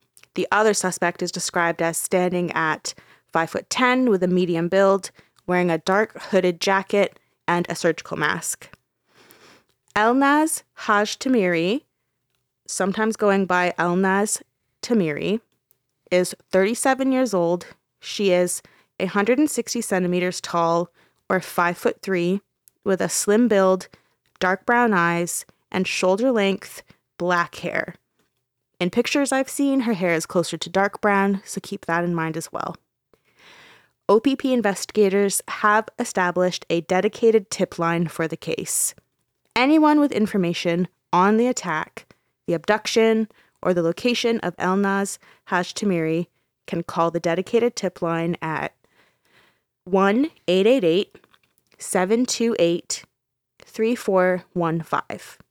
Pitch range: 175-215 Hz